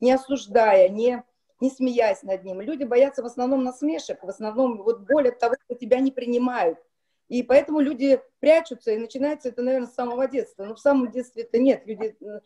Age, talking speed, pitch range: 40-59, 195 wpm, 235-285 Hz